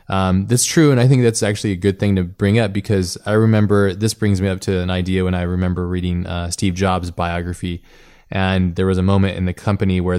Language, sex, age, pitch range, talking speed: English, male, 20-39, 90-105 Hz, 240 wpm